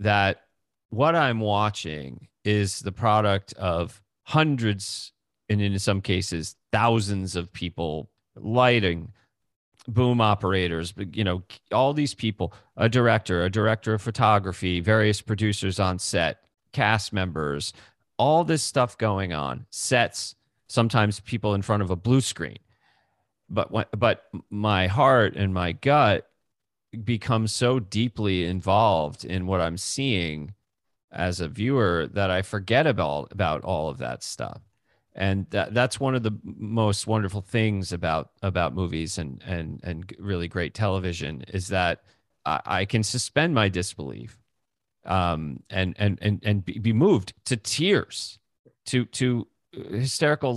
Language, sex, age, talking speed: English, male, 30-49, 140 wpm